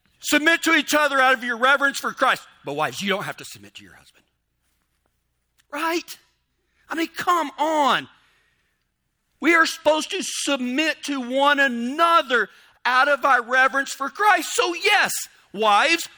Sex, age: male, 50-69